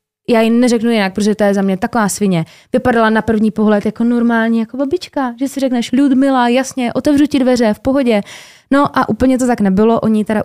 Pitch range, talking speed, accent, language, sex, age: 180-215 Hz, 210 wpm, native, Czech, female, 20-39